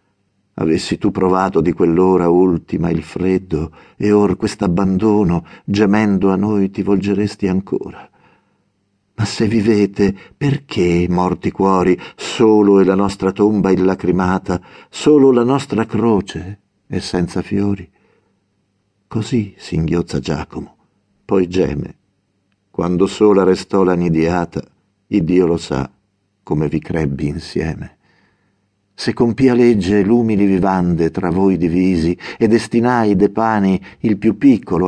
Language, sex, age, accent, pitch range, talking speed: Italian, male, 50-69, native, 95-110 Hz, 120 wpm